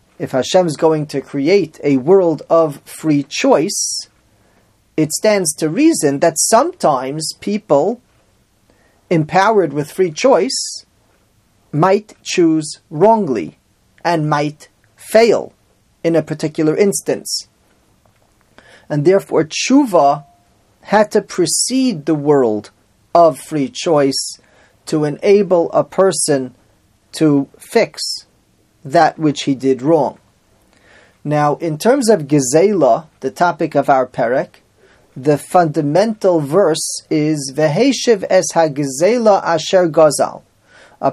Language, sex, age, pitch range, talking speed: English, male, 40-59, 145-195 Hz, 105 wpm